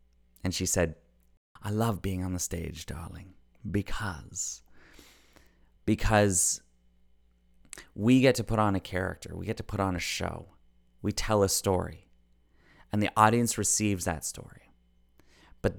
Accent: American